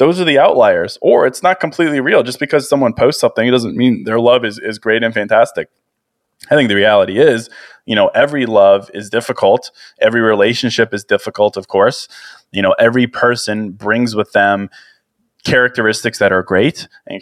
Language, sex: English, male